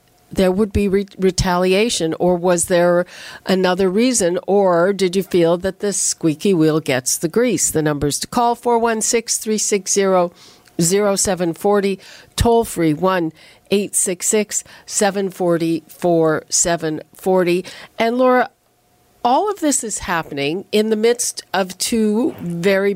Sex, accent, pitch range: female, American, 170-215 Hz